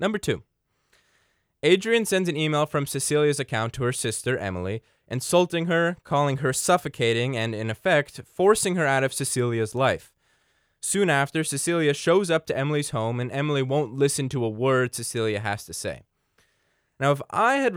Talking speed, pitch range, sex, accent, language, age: 170 wpm, 120-160 Hz, male, American, English, 20-39